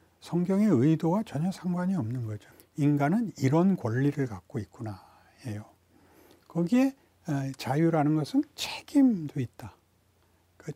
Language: Korean